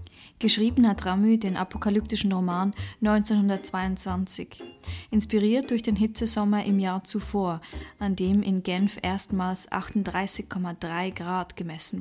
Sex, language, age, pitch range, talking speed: female, English, 20-39, 190-225 Hz, 110 wpm